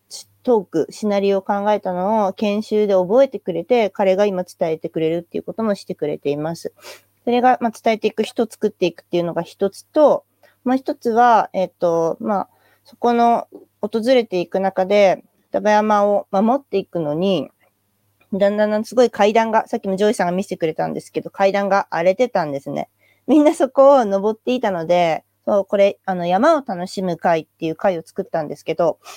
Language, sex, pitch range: English, female, 175-230 Hz